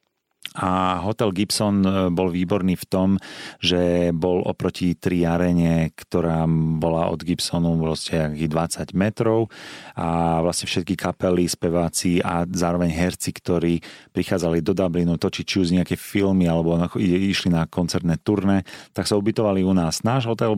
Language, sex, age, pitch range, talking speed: Slovak, male, 30-49, 85-95 Hz, 140 wpm